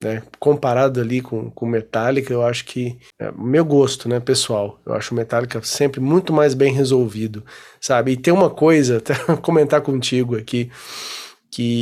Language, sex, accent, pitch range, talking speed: Portuguese, male, Brazilian, 125-160 Hz, 170 wpm